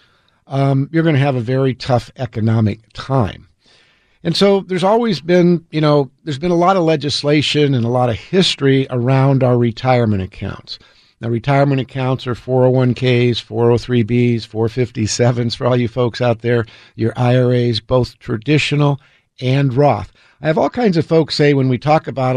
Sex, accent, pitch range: male, American, 115-140 Hz